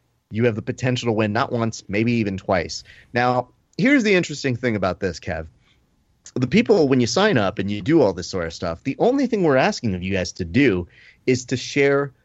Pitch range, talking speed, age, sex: 110-140 Hz, 225 wpm, 30-49, male